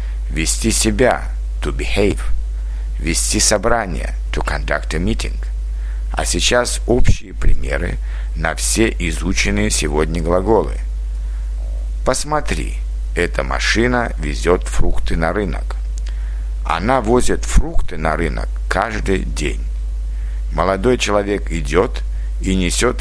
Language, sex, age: Russian, male, 60-79